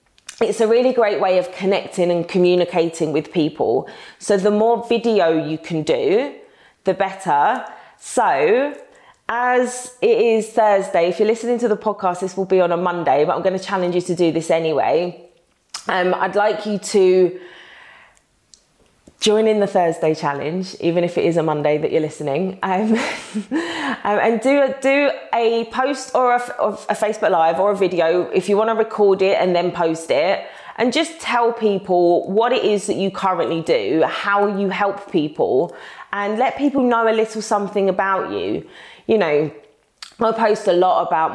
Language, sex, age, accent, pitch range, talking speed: English, female, 20-39, British, 175-225 Hz, 175 wpm